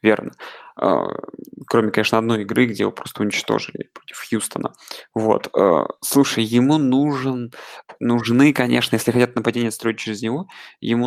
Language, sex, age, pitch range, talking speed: Russian, male, 20-39, 115-135 Hz, 130 wpm